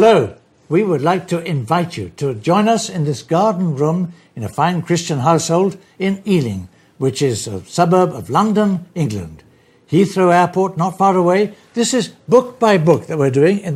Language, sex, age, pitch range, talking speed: English, male, 60-79, 145-190 Hz, 185 wpm